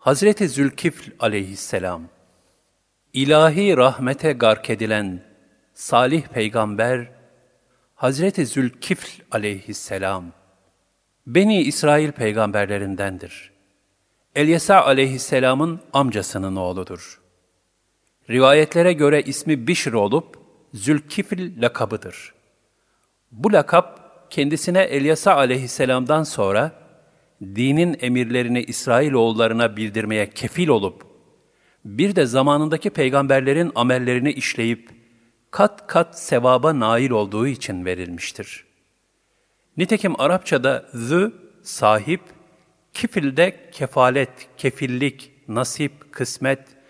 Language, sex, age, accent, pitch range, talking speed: Turkish, male, 50-69, native, 110-155 Hz, 75 wpm